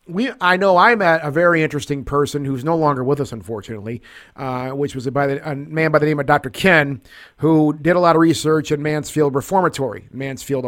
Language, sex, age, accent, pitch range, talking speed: English, male, 50-69, American, 135-160 Hz, 220 wpm